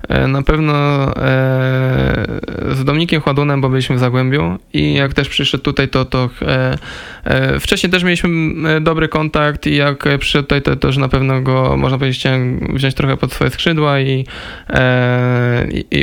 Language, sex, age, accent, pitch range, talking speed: Polish, male, 20-39, native, 125-140 Hz, 150 wpm